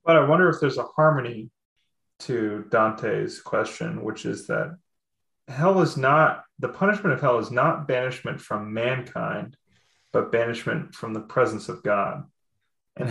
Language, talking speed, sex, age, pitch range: English, 150 wpm, male, 30-49, 110-155 Hz